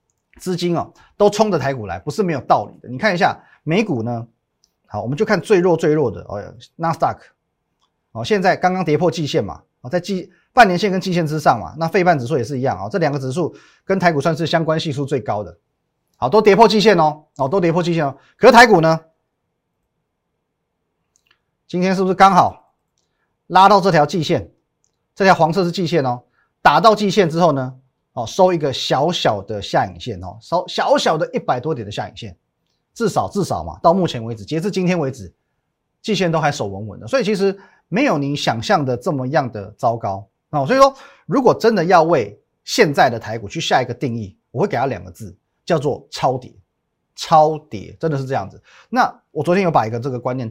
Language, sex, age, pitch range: Chinese, male, 30-49, 125-185 Hz